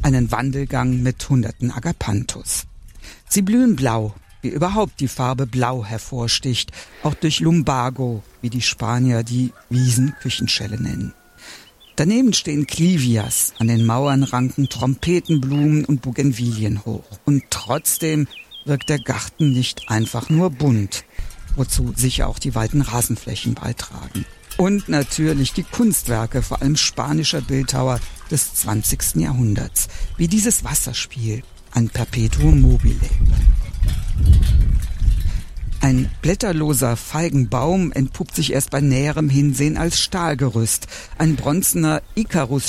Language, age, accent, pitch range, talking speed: German, 50-69, German, 115-145 Hz, 110 wpm